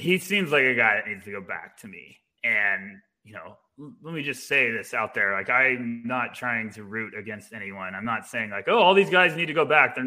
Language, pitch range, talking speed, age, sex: English, 110-130 Hz, 255 wpm, 20-39, male